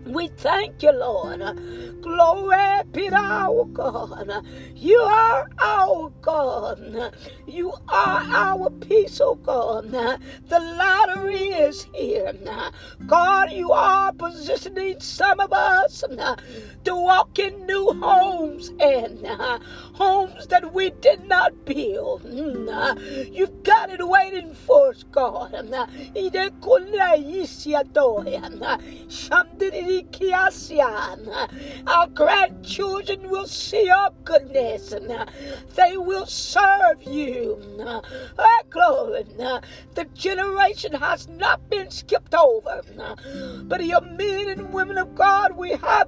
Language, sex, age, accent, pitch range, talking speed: English, female, 40-59, American, 330-405 Hz, 100 wpm